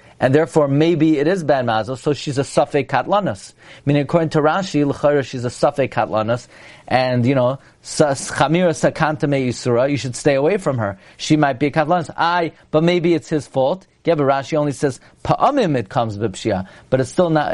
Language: English